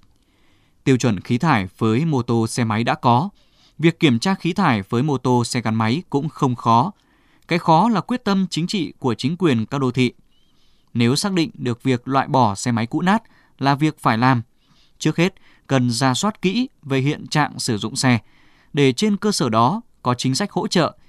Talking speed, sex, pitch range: 215 wpm, male, 120-160 Hz